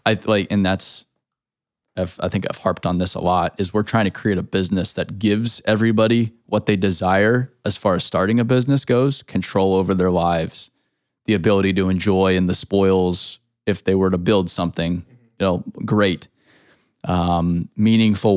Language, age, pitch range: English, 20-39, 95-110 Hz